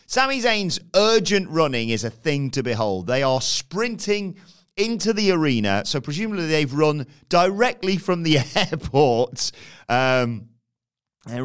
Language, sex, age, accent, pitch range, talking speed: English, male, 30-49, British, 110-160 Hz, 125 wpm